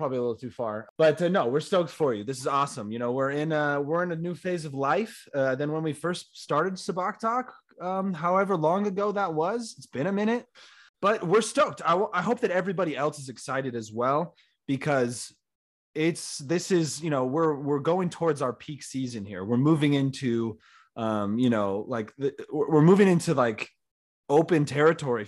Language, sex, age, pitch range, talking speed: English, male, 20-39, 125-160 Hz, 205 wpm